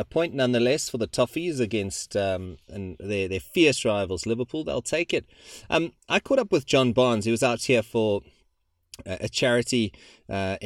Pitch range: 95-115 Hz